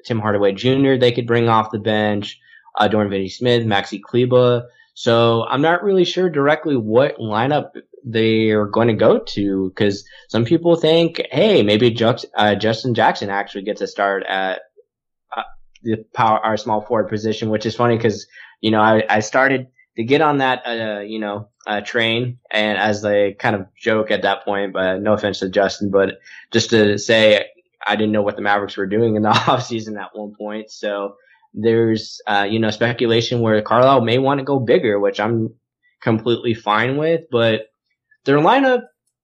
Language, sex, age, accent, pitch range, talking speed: English, male, 10-29, American, 105-130 Hz, 185 wpm